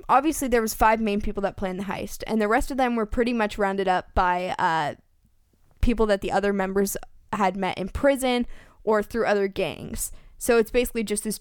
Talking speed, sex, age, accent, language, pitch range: 210 wpm, female, 10-29, American, English, 195-230 Hz